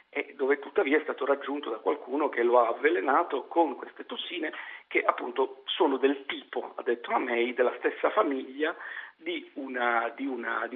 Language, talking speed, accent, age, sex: Italian, 155 wpm, native, 50-69, male